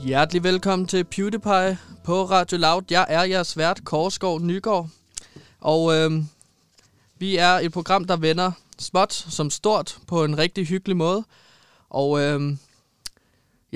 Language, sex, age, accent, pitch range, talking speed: Danish, male, 20-39, native, 150-185 Hz, 135 wpm